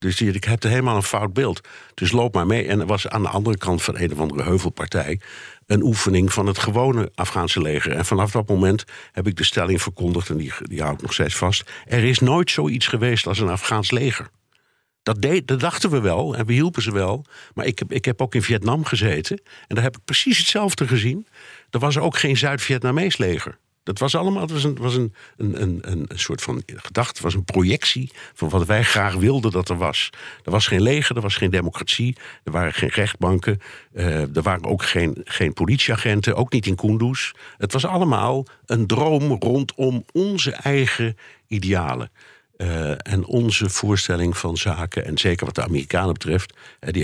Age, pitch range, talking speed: 50-69, 90-125 Hz, 200 wpm